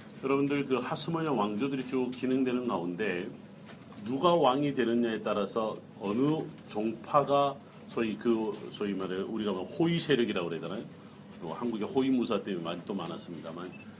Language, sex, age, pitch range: Korean, male, 40-59, 115-150 Hz